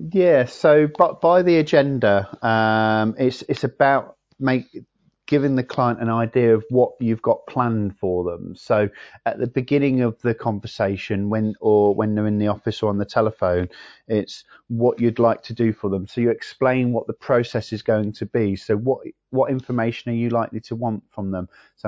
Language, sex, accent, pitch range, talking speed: English, male, British, 105-120 Hz, 195 wpm